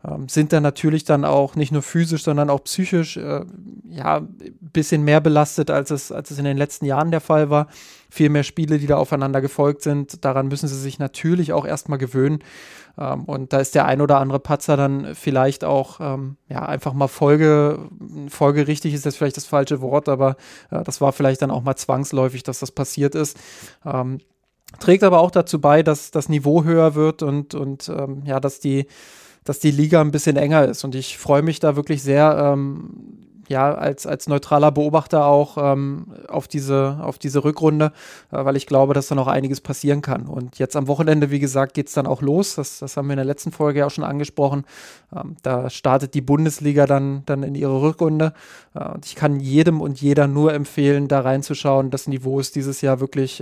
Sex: male